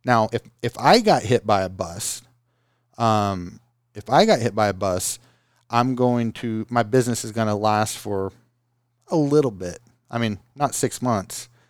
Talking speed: 180 wpm